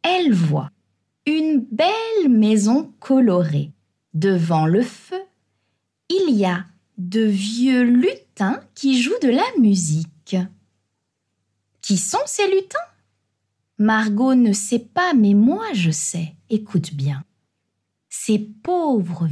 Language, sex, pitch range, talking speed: French, female, 160-255 Hz, 110 wpm